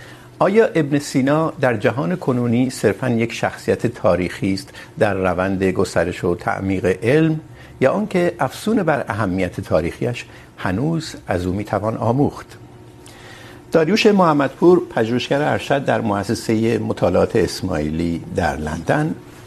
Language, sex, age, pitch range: Urdu, male, 60-79, 95-135 Hz